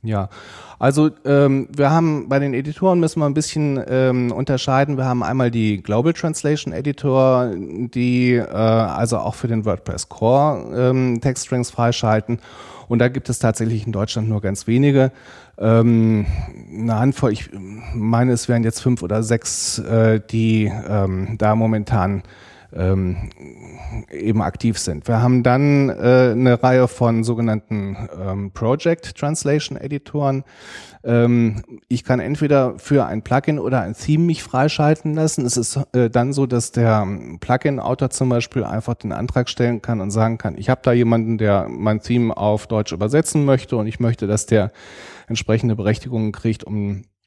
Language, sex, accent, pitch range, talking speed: German, male, German, 110-130 Hz, 160 wpm